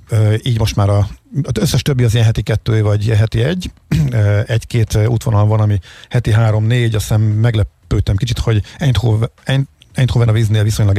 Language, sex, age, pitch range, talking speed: Hungarian, male, 50-69, 105-120 Hz, 170 wpm